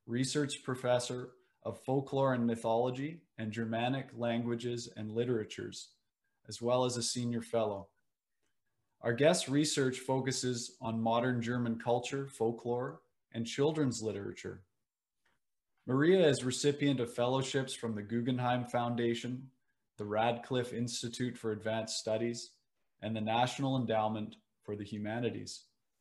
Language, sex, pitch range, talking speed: English, male, 110-125 Hz, 120 wpm